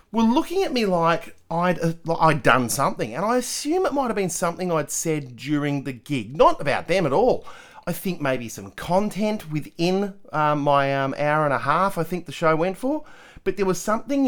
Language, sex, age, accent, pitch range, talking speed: English, male, 30-49, Australian, 150-245 Hz, 225 wpm